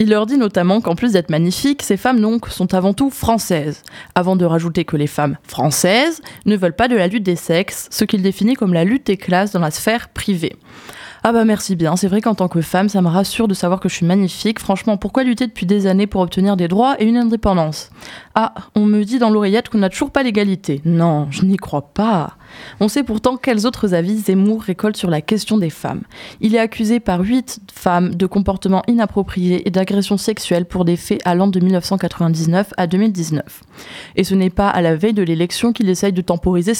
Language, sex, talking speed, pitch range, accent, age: French, female, 220 wpm, 180-220 Hz, French, 20-39